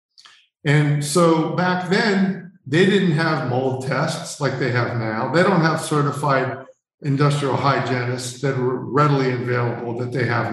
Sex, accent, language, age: male, American, English, 50-69